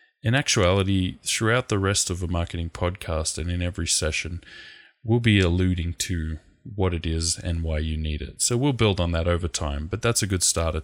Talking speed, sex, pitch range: 205 wpm, male, 80-95 Hz